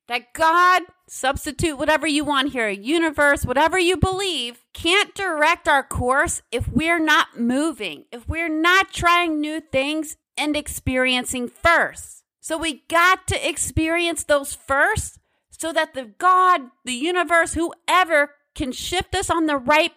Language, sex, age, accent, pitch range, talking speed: English, female, 40-59, American, 275-360 Hz, 145 wpm